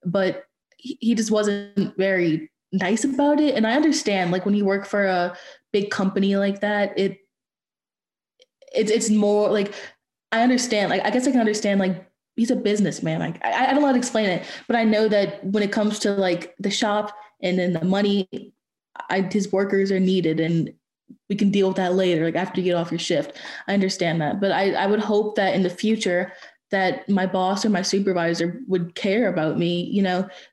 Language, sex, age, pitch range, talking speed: English, female, 20-39, 185-210 Hz, 205 wpm